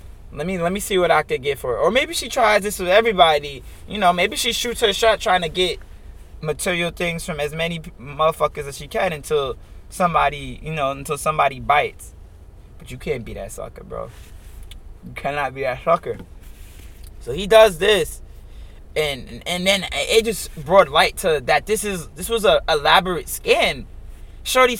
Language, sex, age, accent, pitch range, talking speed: English, male, 20-39, American, 125-200 Hz, 185 wpm